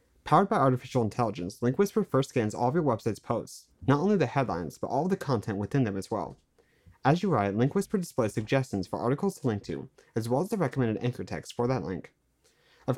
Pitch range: 105-145 Hz